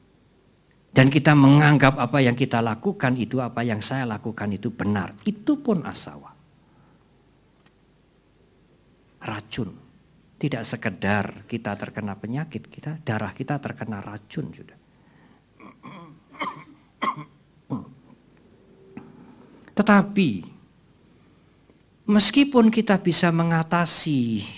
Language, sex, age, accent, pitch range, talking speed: English, male, 50-69, Indonesian, 100-145 Hz, 85 wpm